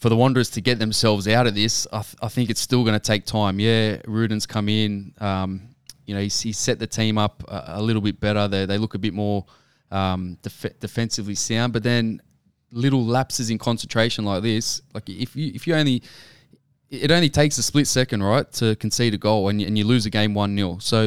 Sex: male